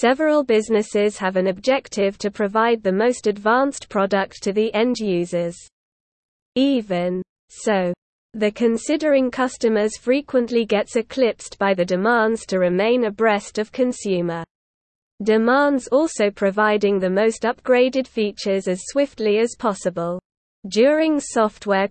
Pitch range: 195-245 Hz